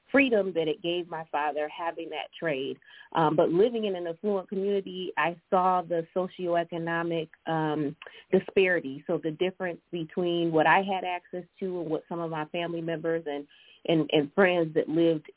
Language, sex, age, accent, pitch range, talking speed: English, female, 30-49, American, 160-185 Hz, 170 wpm